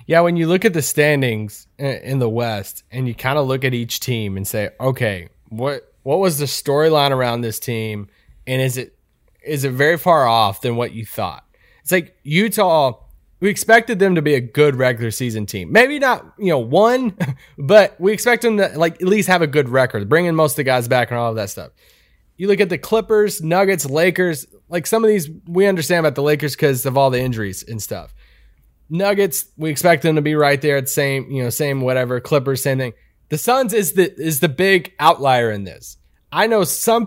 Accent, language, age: American, English, 20-39